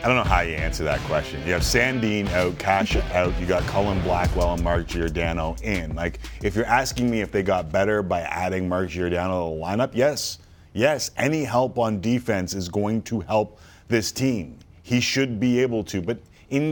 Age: 30-49